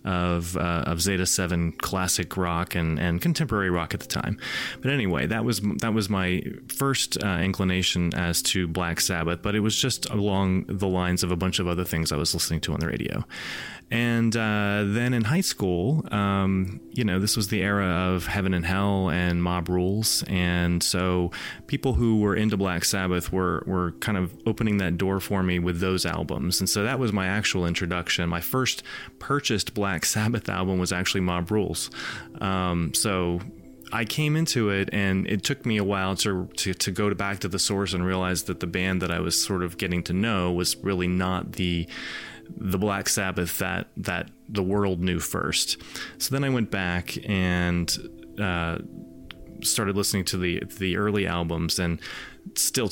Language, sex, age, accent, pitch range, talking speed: English, male, 30-49, American, 90-105 Hz, 190 wpm